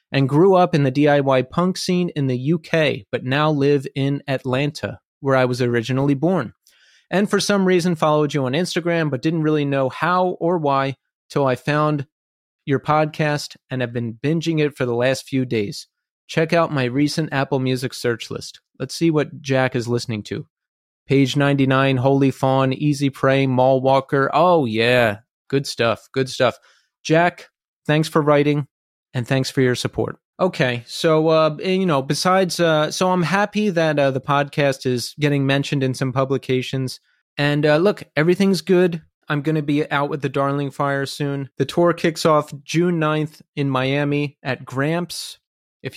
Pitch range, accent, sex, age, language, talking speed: 135-160 Hz, American, male, 30-49, English, 175 wpm